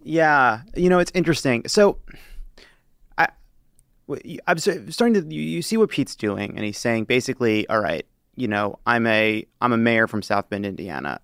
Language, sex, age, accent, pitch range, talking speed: English, male, 30-49, American, 105-130 Hz, 170 wpm